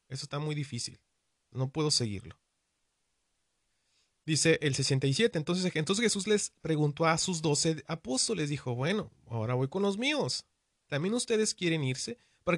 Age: 30-49